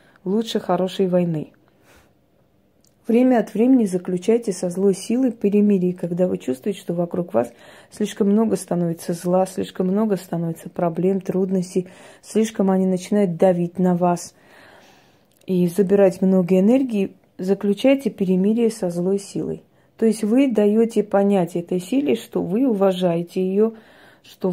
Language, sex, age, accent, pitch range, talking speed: Russian, female, 30-49, native, 180-215 Hz, 130 wpm